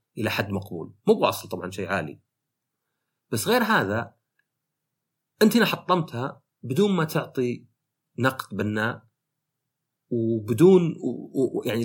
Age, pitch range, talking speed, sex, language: 40-59, 115-155 Hz, 105 wpm, male, Arabic